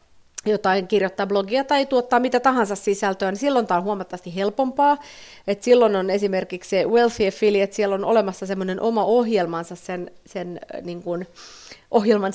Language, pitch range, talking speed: Finnish, 180-225 Hz, 145 wpm